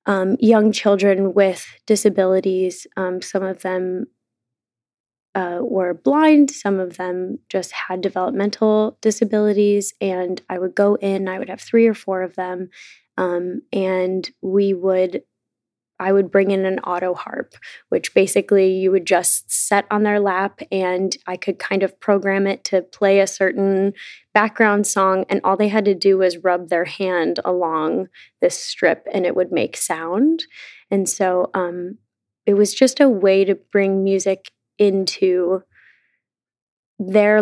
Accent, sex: American, female